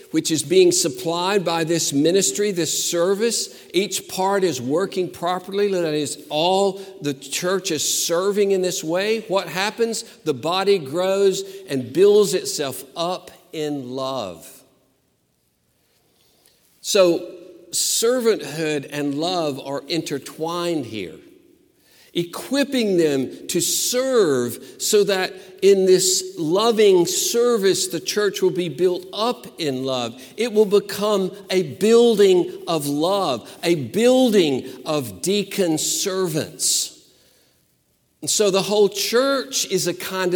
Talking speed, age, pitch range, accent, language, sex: 120 wpm, 50-69, 160-220 Hz, American, English, male